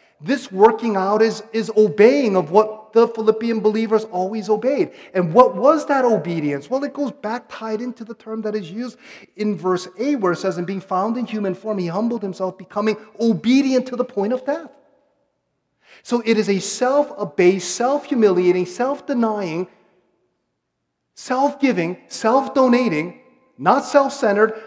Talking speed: 155 wpm